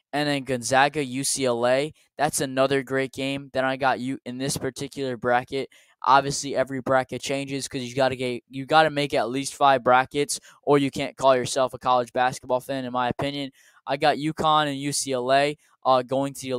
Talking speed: 195 wpm